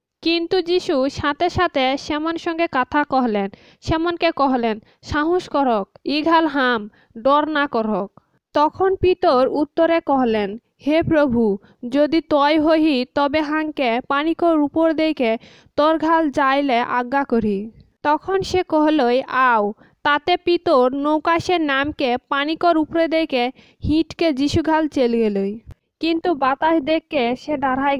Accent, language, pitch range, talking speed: Indian, English, 250-320 Hz, 105 wpm